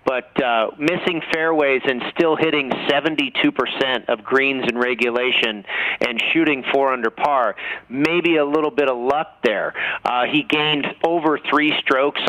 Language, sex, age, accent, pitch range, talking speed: English, male, 40-59, American, 125-155 Hz, 145 wpm